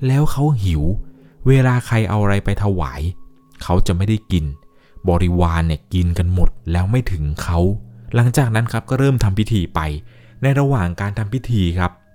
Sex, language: male, Thai